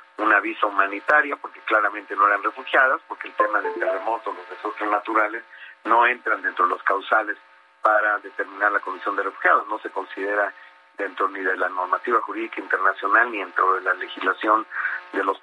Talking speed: 175 wpm